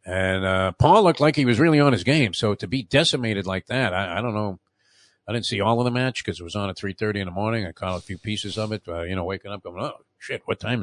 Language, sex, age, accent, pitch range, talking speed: English, male, 50-69, American, 95-125 Hz, 300 wpm